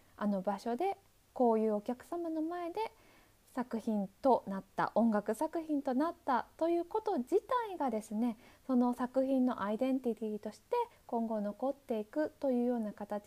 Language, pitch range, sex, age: Japanese, 215-310 Hz, female, 20-39